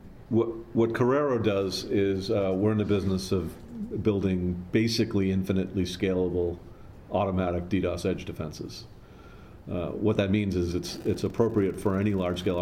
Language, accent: English, American